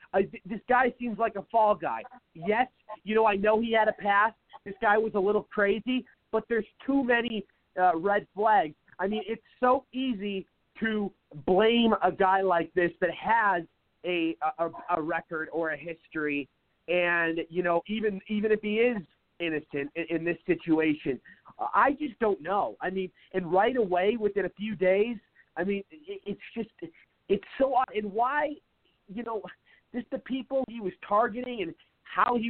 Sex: male